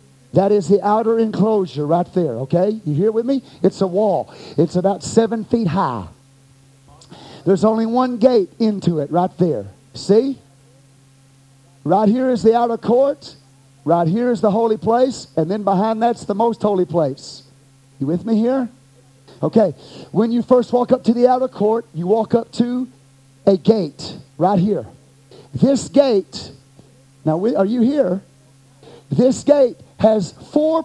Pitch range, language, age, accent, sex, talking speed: 140-235 Hz, English, 40-59, American, male, 160 wpm